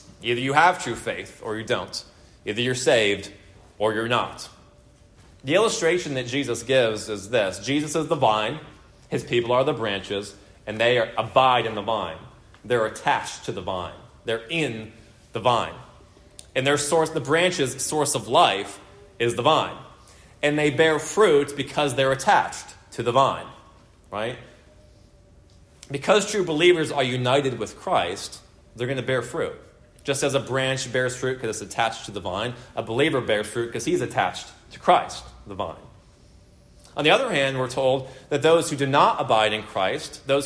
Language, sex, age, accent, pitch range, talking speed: English, male, 30-49, American, 110-145 Hz, 175 wpm